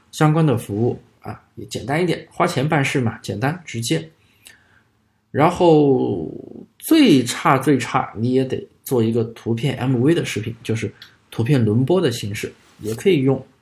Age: 20-39